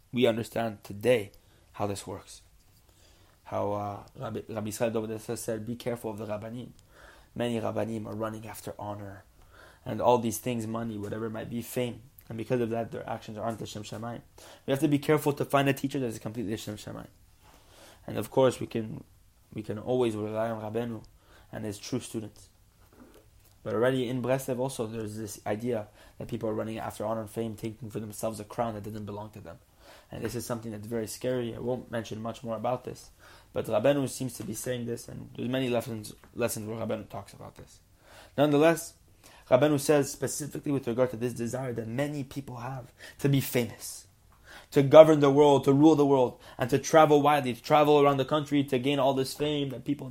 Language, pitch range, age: English, 105-130 Hz, 20-39